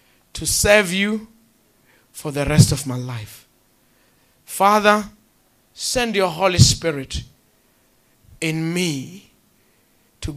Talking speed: 100 wpm